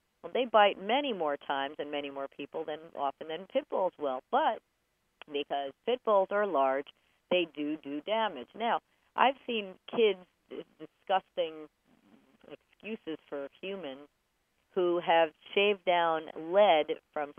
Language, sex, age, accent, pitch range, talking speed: English, female, 40-59, American, 155-230 Hz, 140 wpm